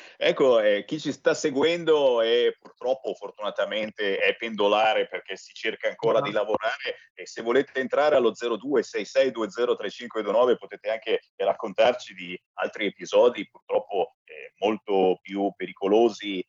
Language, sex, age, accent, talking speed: Italian, male, 30-49, native, 120 wpm